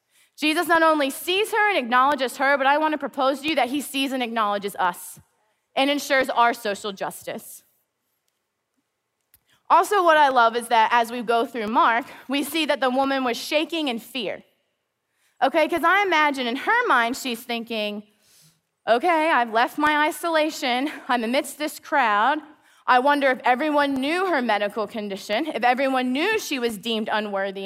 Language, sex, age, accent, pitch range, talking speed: English, female, 20-39, American, 235-315 Hz, 170 wpm